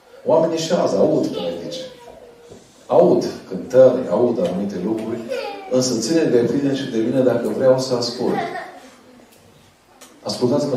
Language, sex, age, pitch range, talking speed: Romanian, male, 40-59, 100-130 Hz, 110 wpm